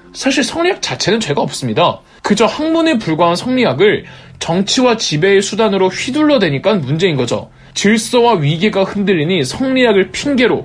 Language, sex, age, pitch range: Korean, male, 20-39, 145-240 Hz